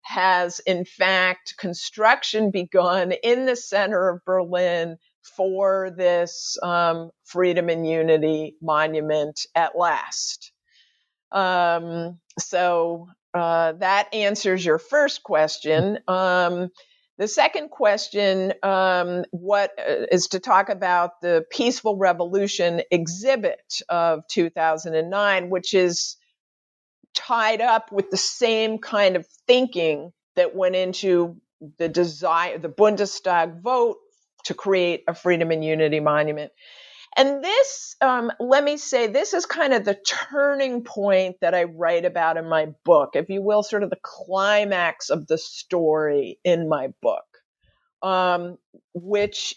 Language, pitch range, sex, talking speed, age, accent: English, 170-215 Hz, female, 125 wpm, 50-69, American